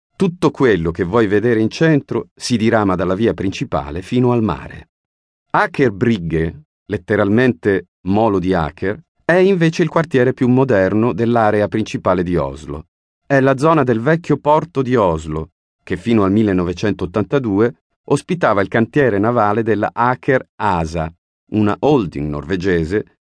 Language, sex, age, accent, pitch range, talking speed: Italian, male, 40-59, native, 95-130 Hz, 135 wpm